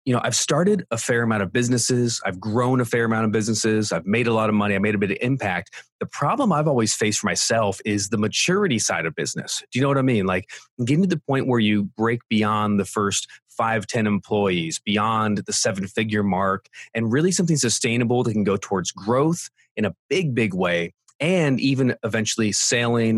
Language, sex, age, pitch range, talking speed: English, male, 30-49, 105-135 Hz, 220 wpm